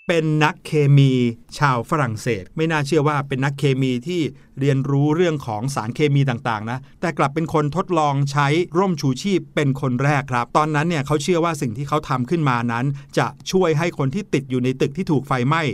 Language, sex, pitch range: Thai, male, 130-170 Hz